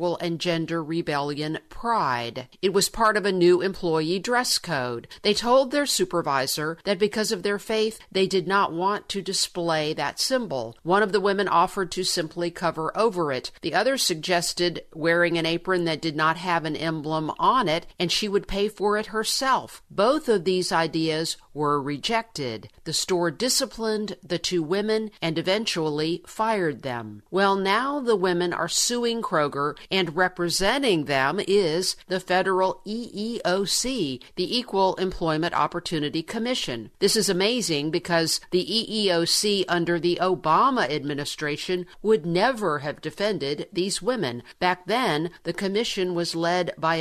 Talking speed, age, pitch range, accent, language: 155 wpm, 50-69, 160-200 Hz, American, English